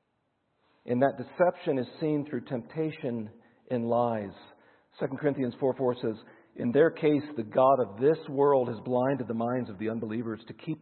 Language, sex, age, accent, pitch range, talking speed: English, male, 50-69, American, 120-170 Hz, 170 wpm